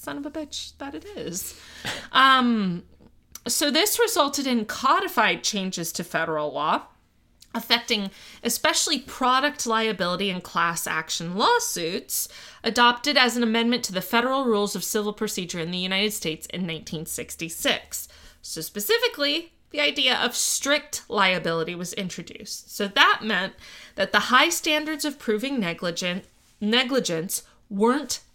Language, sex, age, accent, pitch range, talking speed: English, female, 20-39, American, 175-250 Hz, 130 wpm